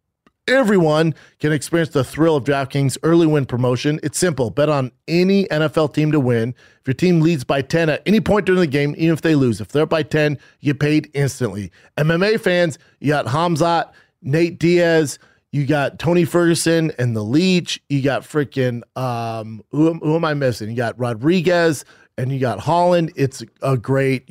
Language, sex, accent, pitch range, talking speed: English, male, American, 130-160 Hz, 185 wpm